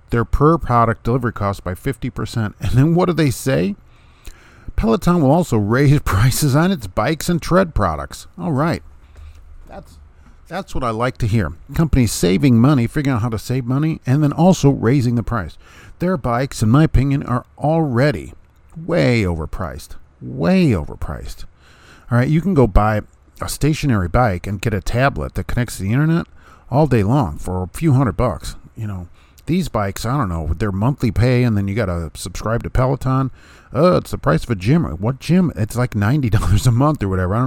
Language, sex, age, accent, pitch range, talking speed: English, male, 50-69, American, 95-130 Hz, 195 wpm